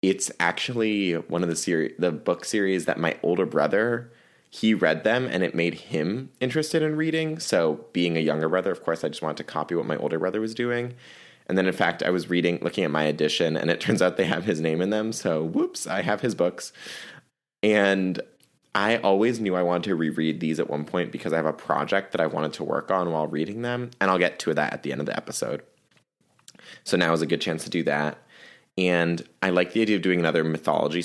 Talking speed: 240 wpm